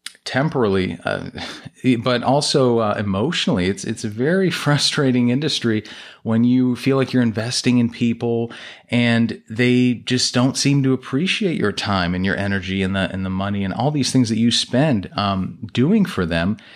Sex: male